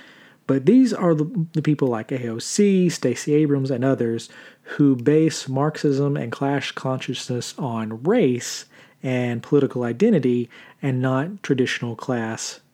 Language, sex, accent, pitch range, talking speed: English, male, American, 120-145 Hz, 125 wpm